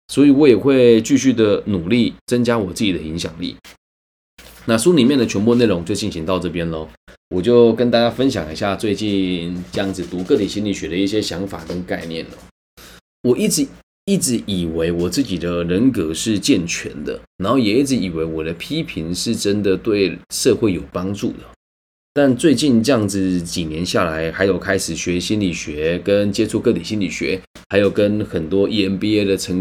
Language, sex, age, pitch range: Chinese, male, 20-39, 90-115 Hz